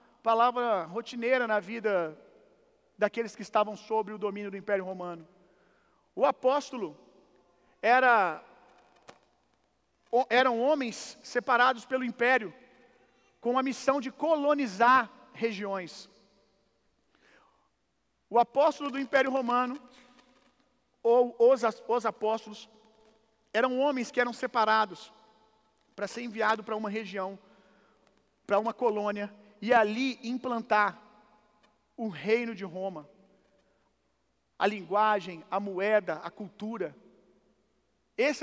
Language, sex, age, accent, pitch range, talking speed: Gujarati, male, 50-69, Brazilian, 210-255 Hz, 100 wpm